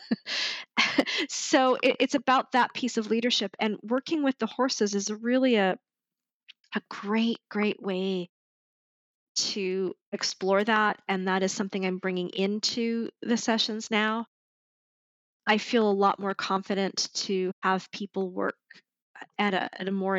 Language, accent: English, American